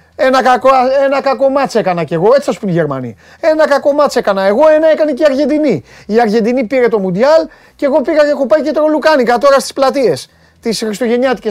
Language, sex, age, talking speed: Greek, male, 30-49, 205 wpm